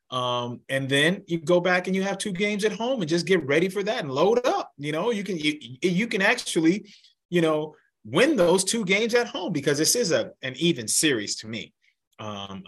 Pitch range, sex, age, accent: 105-135 Hz, male, 30-49, American